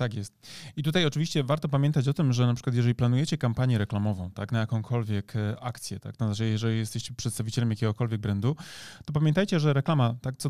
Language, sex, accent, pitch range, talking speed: Polish, male, native, 110-130 Hz, 190 wpm